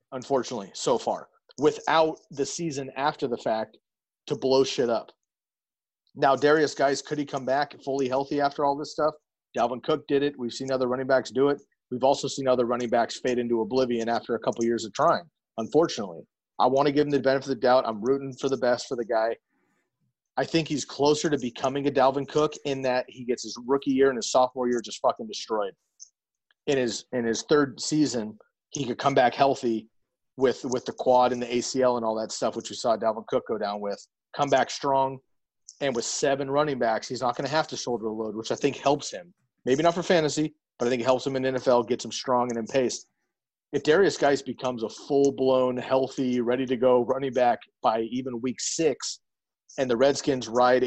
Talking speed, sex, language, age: 215 wpm, male, English, 30-49